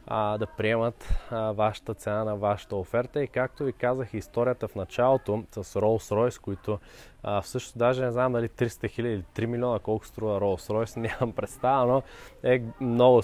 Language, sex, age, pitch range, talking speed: Bulgarian, male, 20-39, 100-120 Hz, 170 wpm